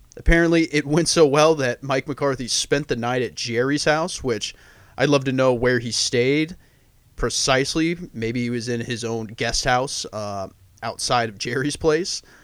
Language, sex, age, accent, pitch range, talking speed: English, male, 30-49, American, 115-145 Hz, 175 wpm